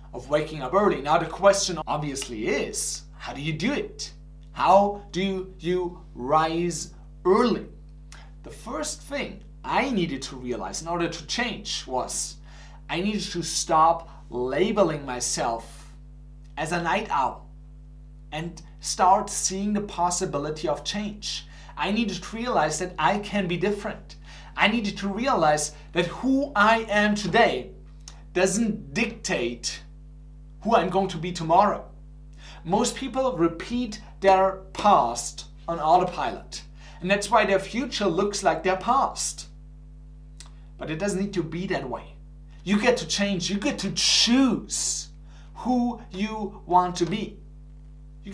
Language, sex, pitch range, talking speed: English, male, 145-205 Hz, 135 wpm